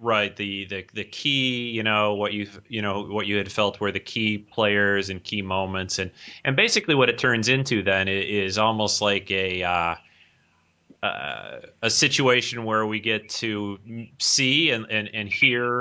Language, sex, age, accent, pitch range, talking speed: English, male, 30-49, American, 100-115 Hz, 180 wpm